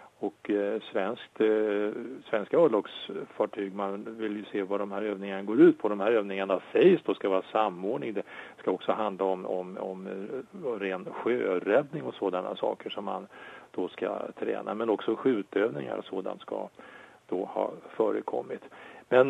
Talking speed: 165 wpm